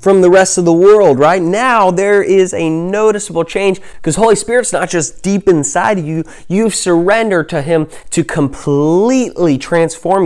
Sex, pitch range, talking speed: male, 130-185 Hz, 170 wpm